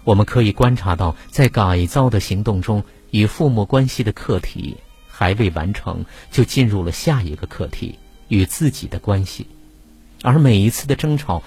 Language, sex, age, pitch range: Chinese, male, 50-69, 90-125 Hz